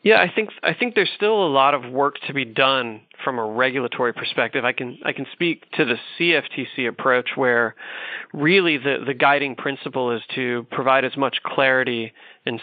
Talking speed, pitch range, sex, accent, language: 190 wpm, 120-140 Hz, male, American, English